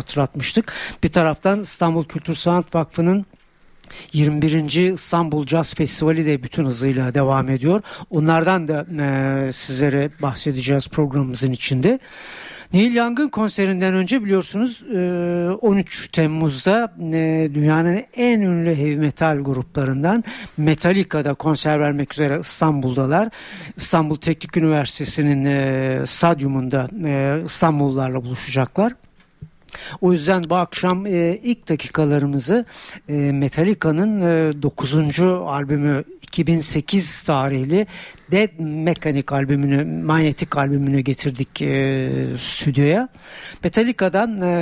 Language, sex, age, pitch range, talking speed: Turkish, male, 60-79, 140-180 Hz, 90 wpm